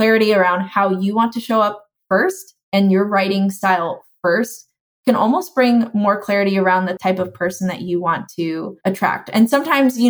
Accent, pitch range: American, 185-220 Hz